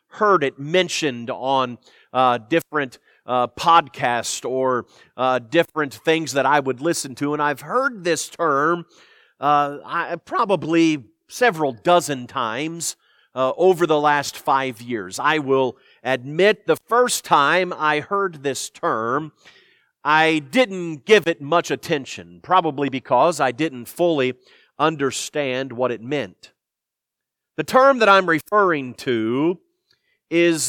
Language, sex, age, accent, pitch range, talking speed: English, male, 40-59, American, 135-175 Hz, 130 wpm